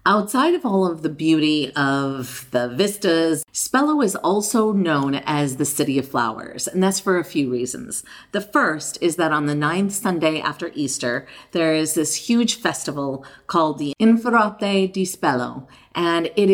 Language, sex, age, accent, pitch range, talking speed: English, female, 50-69, American, 145-190 Hz, 165 wpm